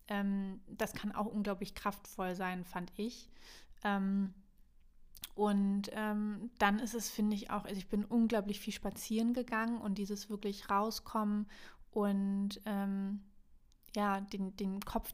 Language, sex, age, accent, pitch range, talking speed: German, female, 20-39, German, 190-210 Hz, 135 wpm